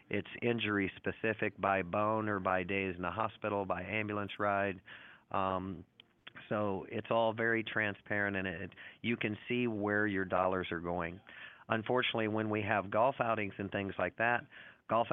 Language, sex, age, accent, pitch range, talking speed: English, male, 40-59, American, 95-110 Hz, 165 wpm